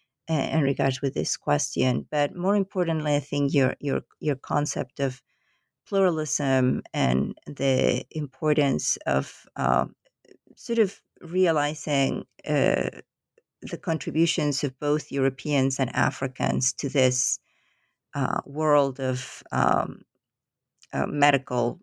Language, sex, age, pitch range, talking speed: English, female, 50-69, 130-155 Hz, 110 wpm